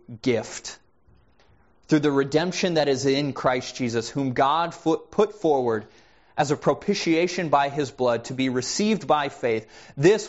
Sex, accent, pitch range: male, American, 125-165 Hz